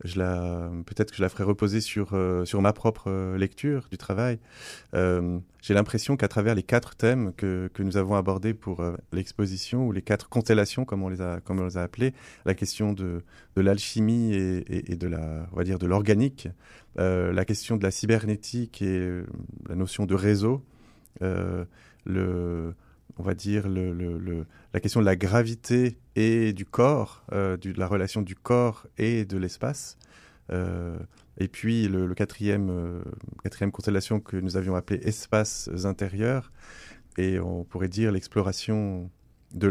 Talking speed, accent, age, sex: 175 wpm, French, 30-49, male